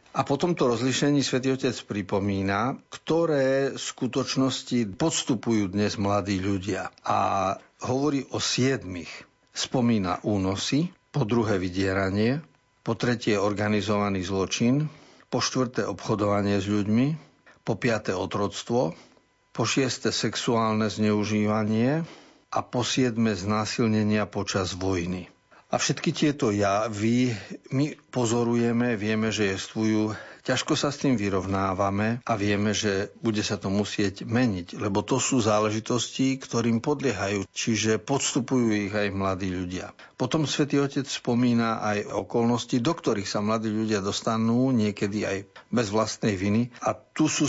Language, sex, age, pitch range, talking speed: Slovak, male, 50-69, 105-130 Hz, 125 wpm